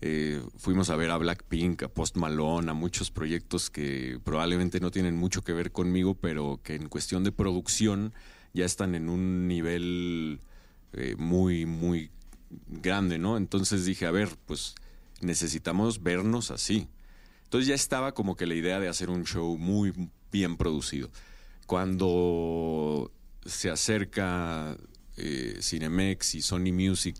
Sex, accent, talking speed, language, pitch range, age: male, Mexican, 145 wpm, Spanish, 80-95 Hz, 40-59